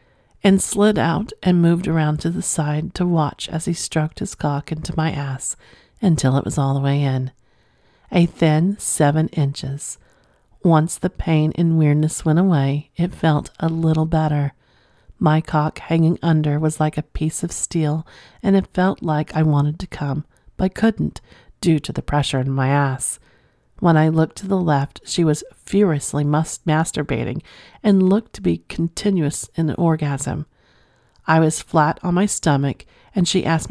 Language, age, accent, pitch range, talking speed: English, 40-59, American, 145-170 Hz, 170 wpm